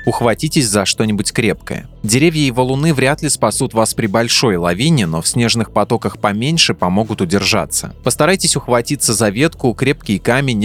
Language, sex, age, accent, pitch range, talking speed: Russian, male, 20-39, native, 100-125 Hz, 150 wpm